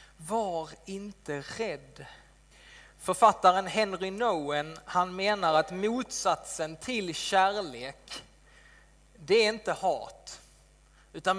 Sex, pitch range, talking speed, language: male, 160-215 Hz, 90 wpm, Swedish